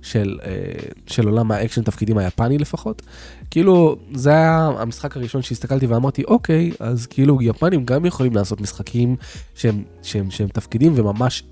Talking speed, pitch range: 140 wpm, 105-135 Hz